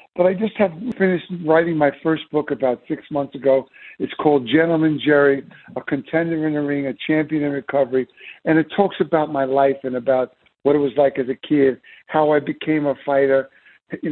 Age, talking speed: 60-79, 200 wpm